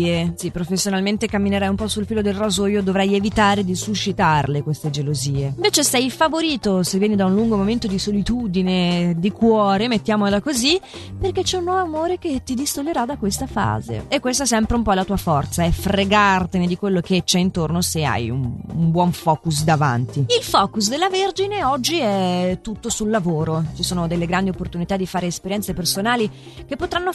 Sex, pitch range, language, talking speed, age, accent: female, 170-230 Hz, Italian, 190 wpm, 30-49, native